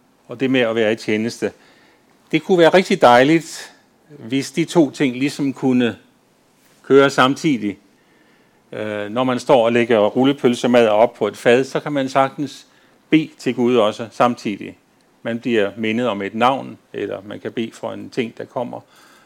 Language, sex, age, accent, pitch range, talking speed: Danish, male, 40-59, native, 115-145 Hz, 170 wpm